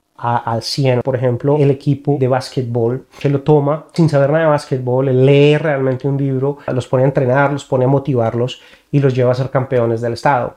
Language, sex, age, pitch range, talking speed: Spanish, male, 30-49, 125-155 Hz, 205 wpm